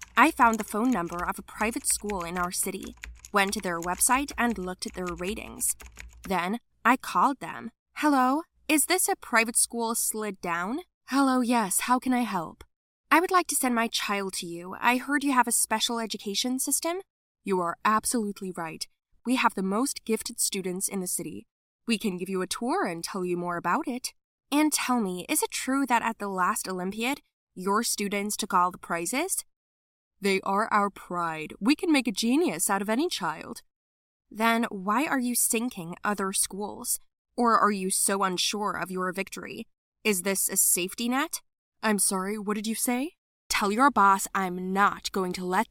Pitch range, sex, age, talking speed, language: 195-250 Hz, female, 10-29, 190 wpm, English